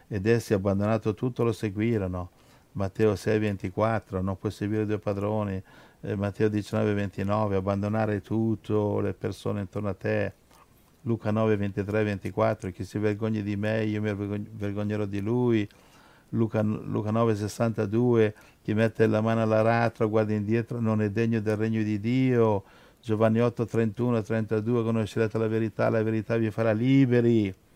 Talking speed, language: 145 wpm, Italian